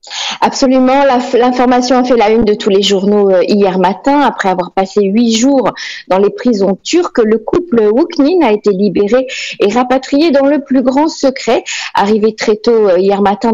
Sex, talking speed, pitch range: female, 175 wpm, 205-275 Hz